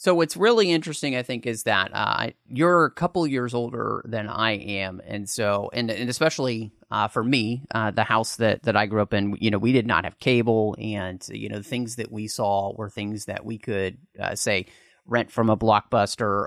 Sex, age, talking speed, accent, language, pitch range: male, 30-49, 220 wpm, American, English, 105-130 Hz